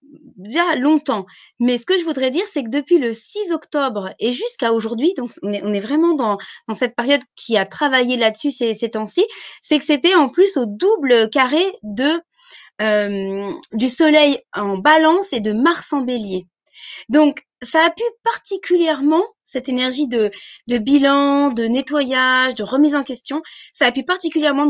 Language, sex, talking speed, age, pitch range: French, female, 170 wpm, 20-39, 240-320 Hz